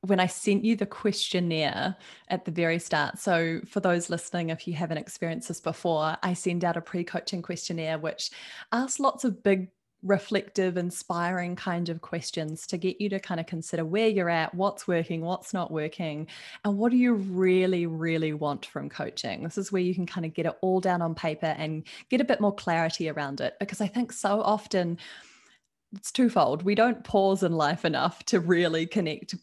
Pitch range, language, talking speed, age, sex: 165-200 Hz, English, 200 wpm, 20-39, female